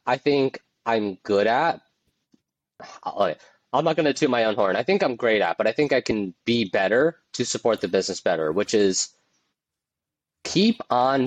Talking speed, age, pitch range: 180 wpm, 20-39, 100-130 Hz